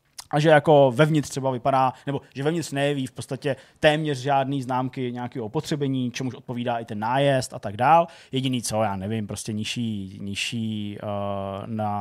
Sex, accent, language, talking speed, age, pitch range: male, native, Czech, 160 wpm, 20-39, 110-130 Hz